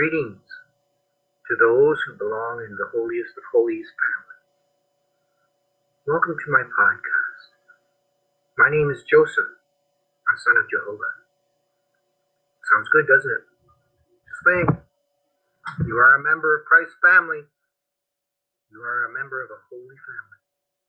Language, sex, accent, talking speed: English, male, American, 125 wpm